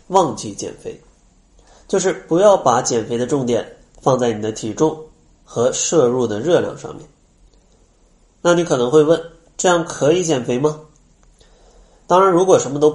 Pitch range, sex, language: 120-165 Hz, male, Chinese